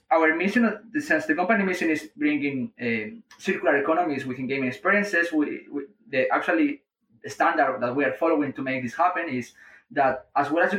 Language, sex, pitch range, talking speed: English, male, 135-195 Hz, 195 wpm